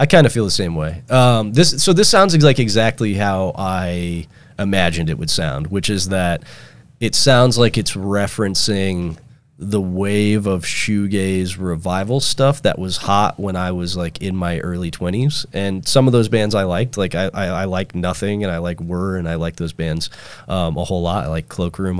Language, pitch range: English, 85-110 Hz